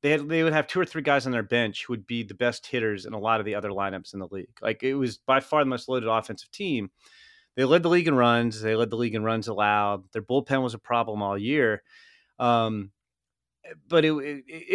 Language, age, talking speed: English, 30-49, 250 wpm